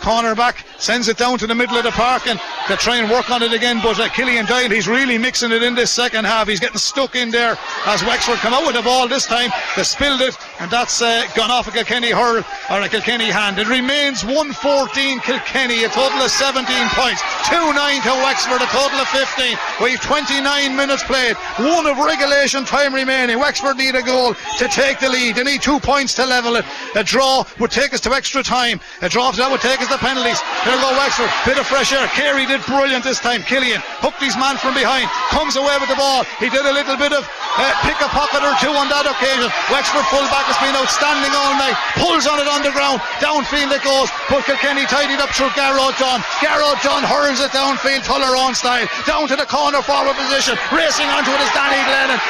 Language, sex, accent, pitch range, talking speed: English, male, Irish, 240-275 Hz, 225 wpm